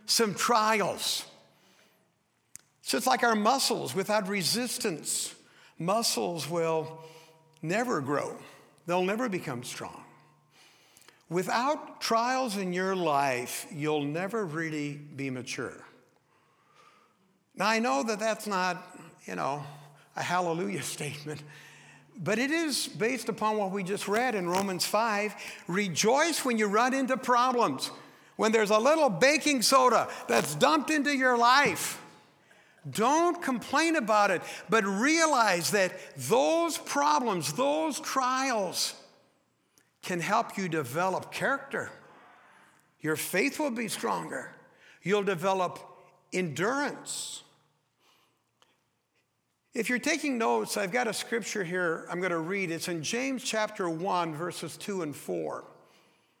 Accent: American